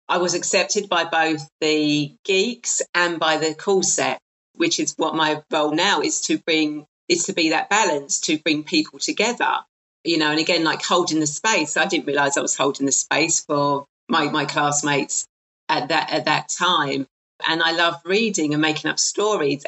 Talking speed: 190 wpm